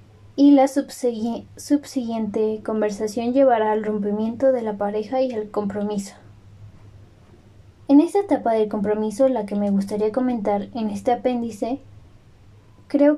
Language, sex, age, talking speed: Spanish, female, 20-39, 125 wpm